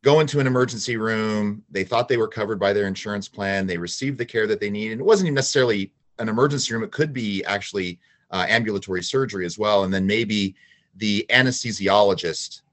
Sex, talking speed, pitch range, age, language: male, 205 wpm, 95-125 Hz, 30-49, English